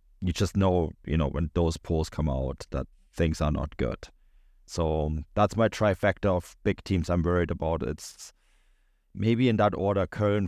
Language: English